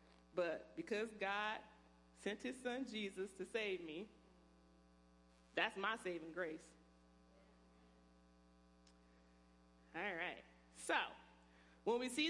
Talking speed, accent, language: 100 wpm, American, English